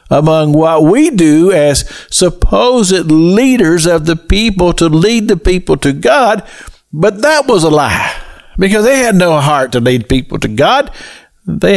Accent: American